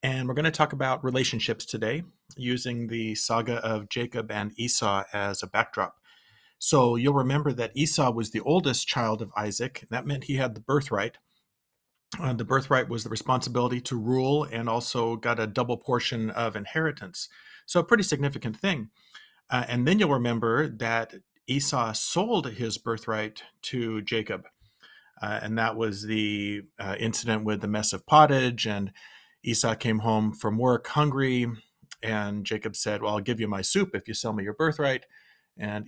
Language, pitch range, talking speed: English, 110-135 Hz, 170 wpm